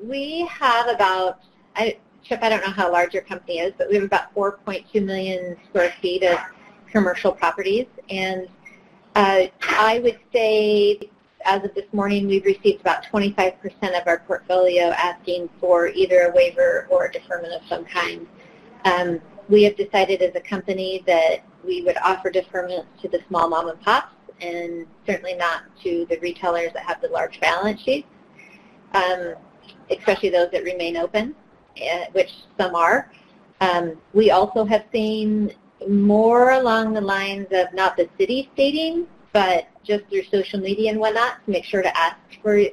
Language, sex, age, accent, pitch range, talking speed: English, female, 30-49, American, 180-215 Hz, 160 wpm